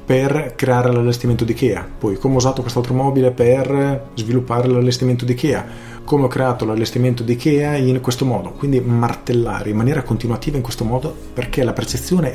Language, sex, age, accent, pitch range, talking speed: Italian, male, 30-49, native, 105-125 Hz, 175 wpm